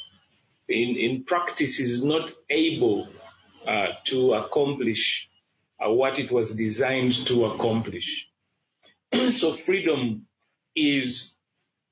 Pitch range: 120-150 Hz